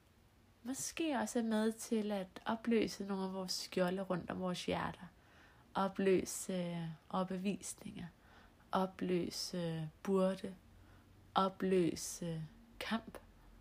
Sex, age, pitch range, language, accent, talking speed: female, 30-49, 160-200 Hz, Danish, native, 95 wpm